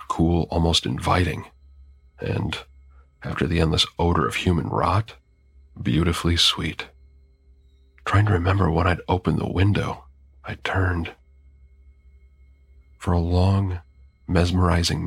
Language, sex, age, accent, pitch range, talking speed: English, male, 40-59, American, 70-95 Hz, 110 wpm